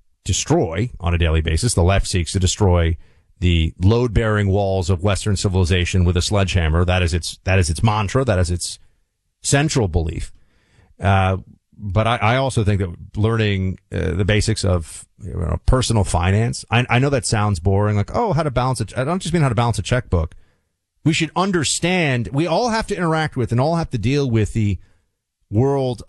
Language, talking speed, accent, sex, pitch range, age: English, 190 wpm, American, male, 95-135 Hz, 30-49